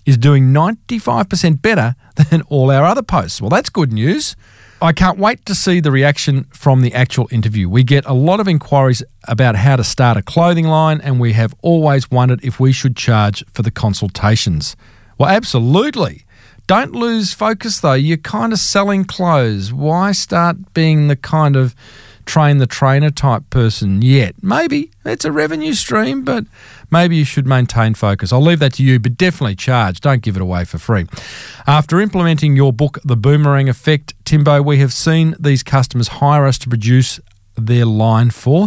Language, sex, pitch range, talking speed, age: English, male, 120-155 Hz, 180 wpm, 40-59